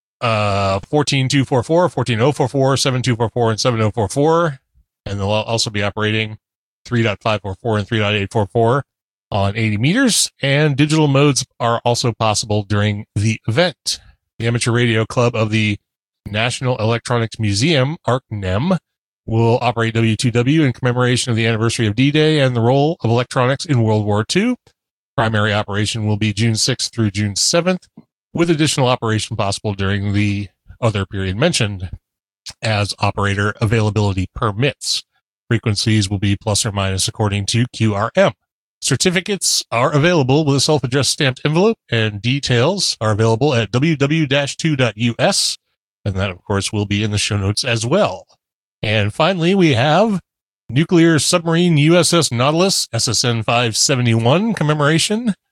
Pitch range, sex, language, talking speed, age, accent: 105-140 Hz, male, English, 130 wpm, 30-49, American